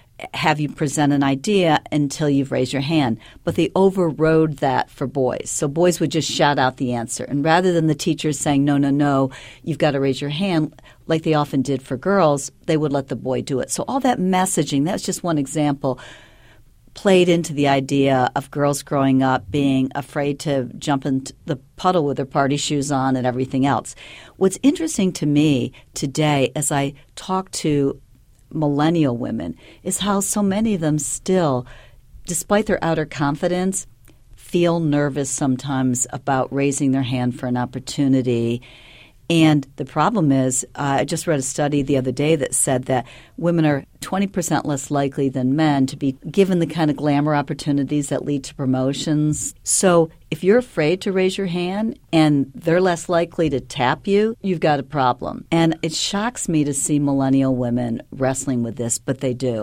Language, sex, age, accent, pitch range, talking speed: English, female, 50-69, American, 135-160 Hz, 185 wpm